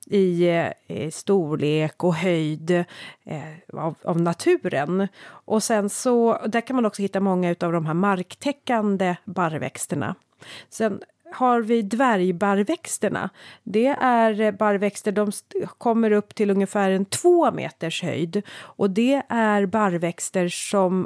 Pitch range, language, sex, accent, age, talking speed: 170-215 Hz, Swedish, female, native, 30-49, 130 wpm